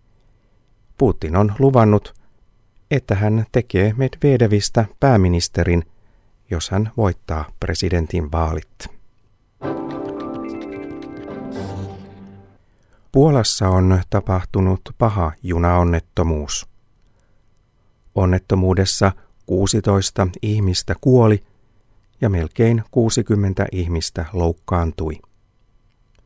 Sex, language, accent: male, Finnish, native